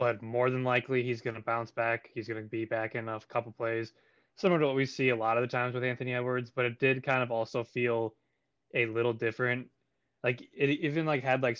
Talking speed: 250 wpm